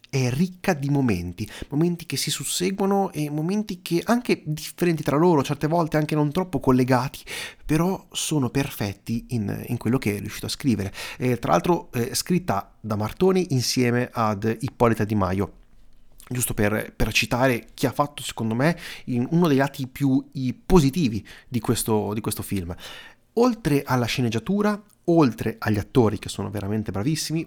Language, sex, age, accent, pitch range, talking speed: Italian, male, 30-49, native, 110-140 Hz, 165 wpm